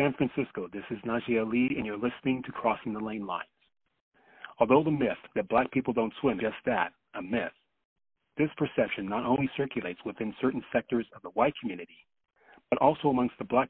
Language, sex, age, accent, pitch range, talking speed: English, male, 40-59, American, 110-135 Hz, 195 wpm